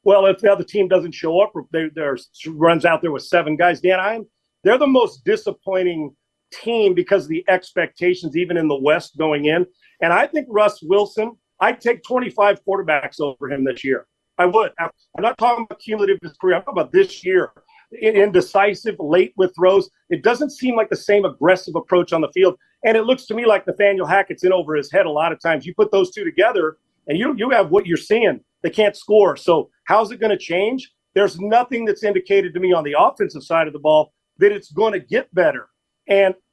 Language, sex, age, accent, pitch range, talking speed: English, male, 40-59, American, 180-230 Hz, 210 wpm